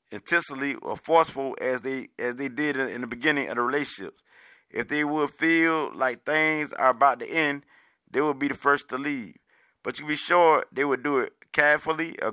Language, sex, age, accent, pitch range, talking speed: English, male, 30-49, American, 135-155 Hz, 205 wpm